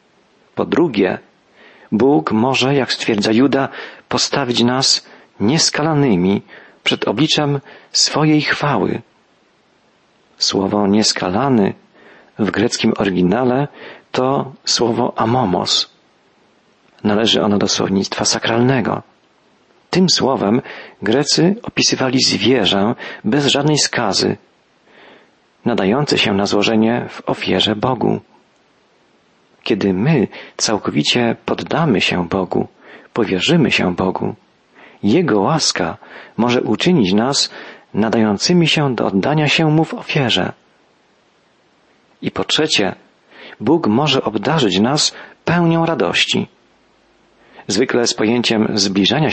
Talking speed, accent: 95 wpm, native